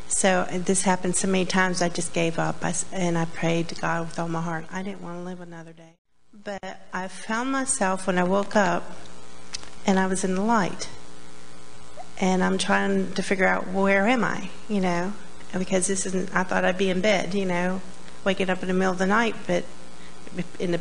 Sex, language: female, English